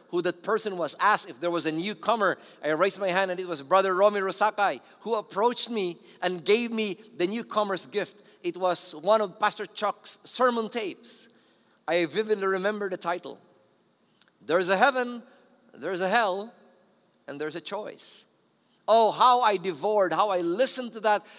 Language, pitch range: English, 170-215 Hz